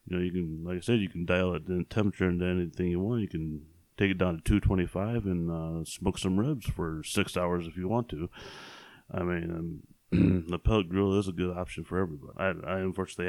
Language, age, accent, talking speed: English, 30-49, American, 225 wpm